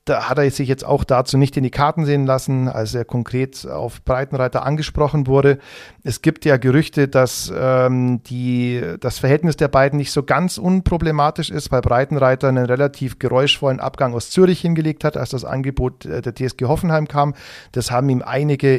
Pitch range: 125-145 Hz